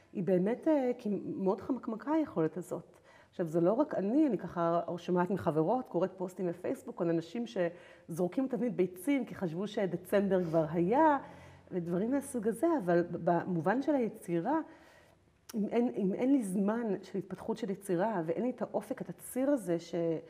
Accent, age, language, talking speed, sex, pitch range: native, 40-59, Hebrew, 160 wpm, female, 175-240 Hz